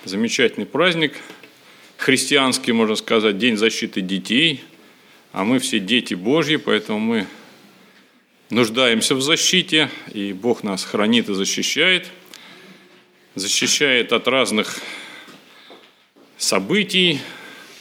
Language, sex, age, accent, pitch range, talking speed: Russian, male, 40-59, native, 120-185 Hz, 95 wpm